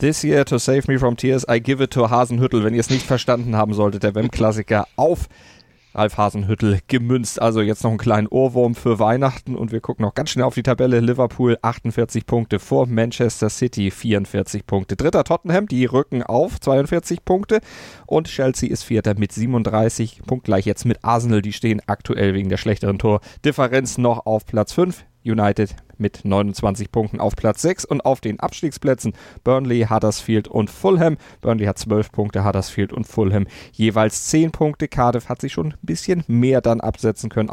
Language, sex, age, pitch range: German, male, 30-49, 110-130 Hz